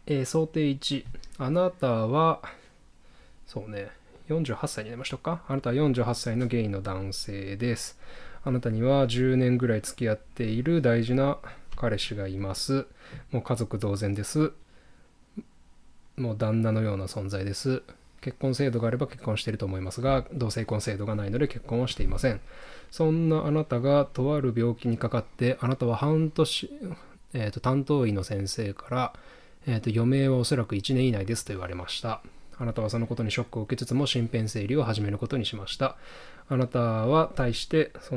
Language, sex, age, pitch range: Japanese, male, 20-39, 110-135 Hz